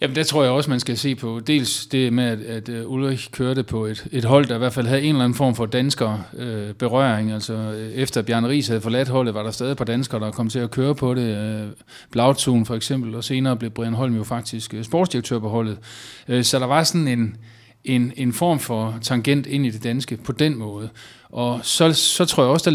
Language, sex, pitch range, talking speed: Danish, male, 115-135 Hz, 235 wpm